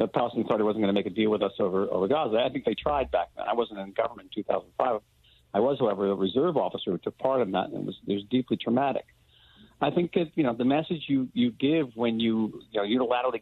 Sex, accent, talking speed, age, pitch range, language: male, American, 275 wpm, 50-69, 105-140 Hz, English